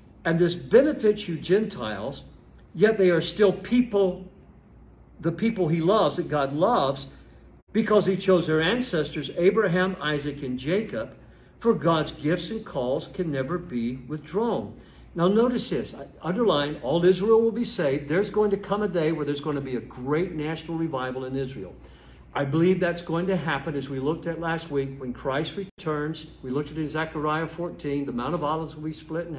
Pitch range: 140-185 Hz